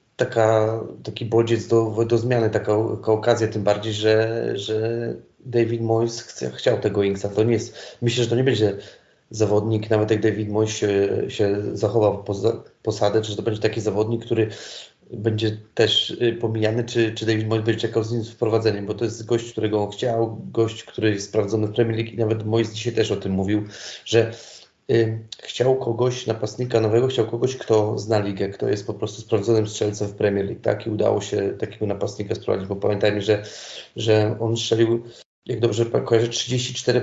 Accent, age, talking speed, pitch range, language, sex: native, 30-49, 180 wpm, 110-115 Hz, Polish, male